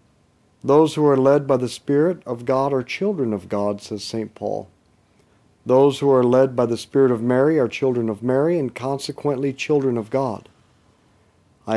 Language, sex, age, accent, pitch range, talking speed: English, male, 50-69, American, 110-145 Hz, 180 wpm